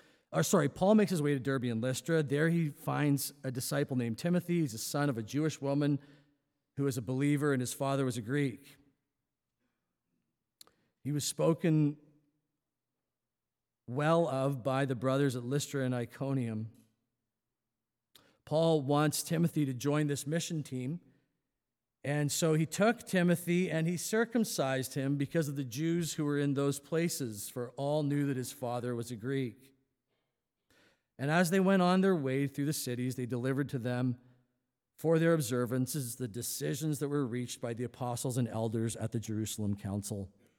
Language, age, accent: English, 40-59, American